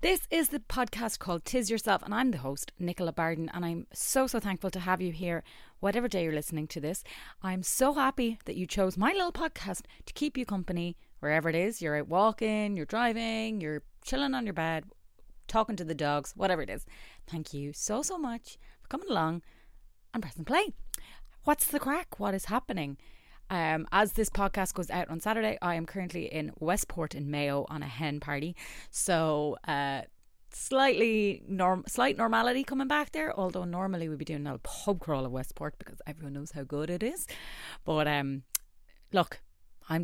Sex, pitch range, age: female, 150-220 Hz, 30-49